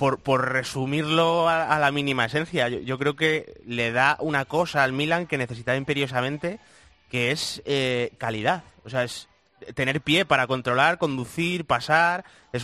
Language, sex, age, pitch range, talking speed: Spanish, male, 30-49, 120-155 Hz, 170 wpm